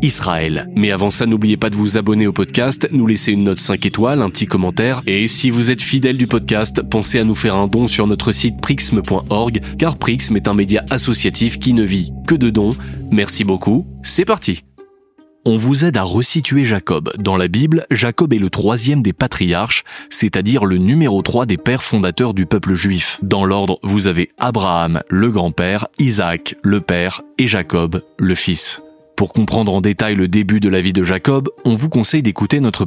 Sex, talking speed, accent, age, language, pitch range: male, 195 wpm, French, 20-39, French, 95-130 Hz